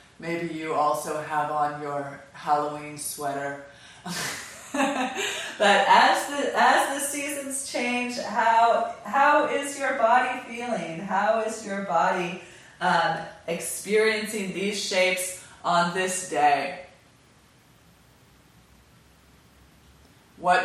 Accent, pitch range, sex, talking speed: American, 155-215 Hz, female, 95 wpm